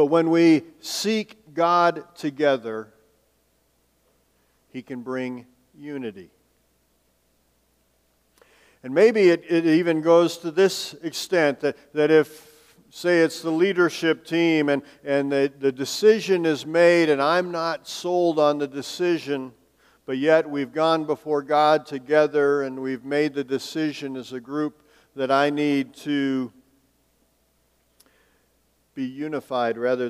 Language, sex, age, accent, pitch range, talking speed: English, male, 50-69, American, 110-150 Hz, 125 wpm